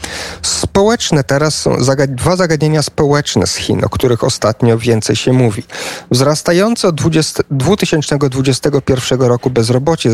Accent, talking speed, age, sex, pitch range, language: native, 110 wpm, 40-59, male, 125-165 Hz, Polish